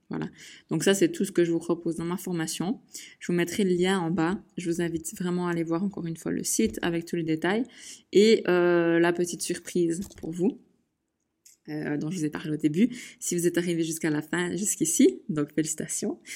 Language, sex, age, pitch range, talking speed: French, female, 20-39, 165-190 Hz, 225 wpm